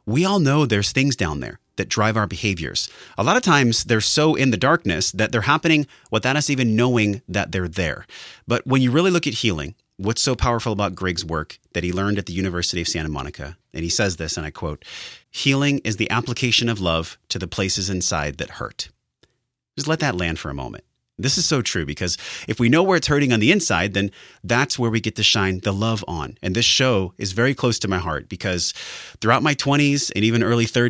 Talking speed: 230 wpm